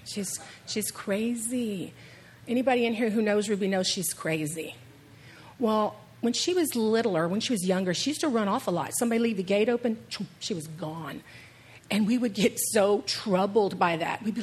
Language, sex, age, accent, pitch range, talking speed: English, female, 40-59, American, 180-255 Hz, 190 wpm